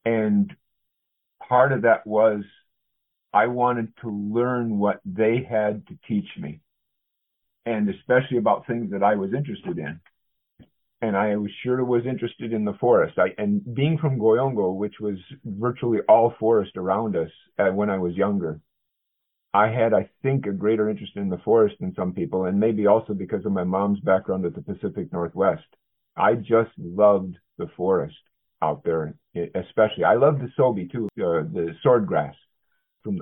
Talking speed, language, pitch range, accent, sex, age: 170 wpm, English, 100-125 Hz, American, male, 50-69